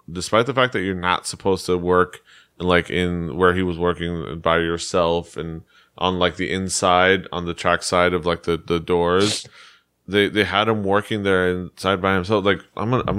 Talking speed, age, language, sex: 210 wpm, 20-39, English, male